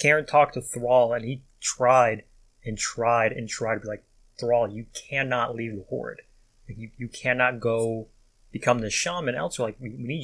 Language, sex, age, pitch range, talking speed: English, male, 20-39, 110-125 Hz, 195 wpm